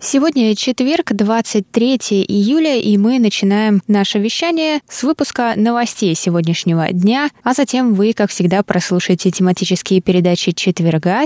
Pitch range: 170-215 Hz